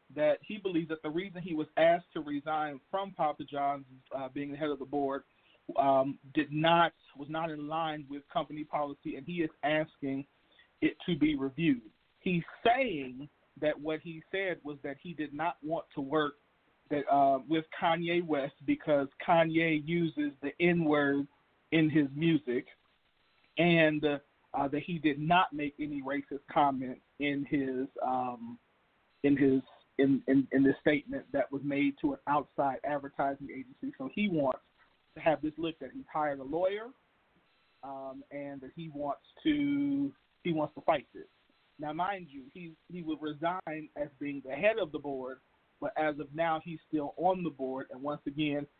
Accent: American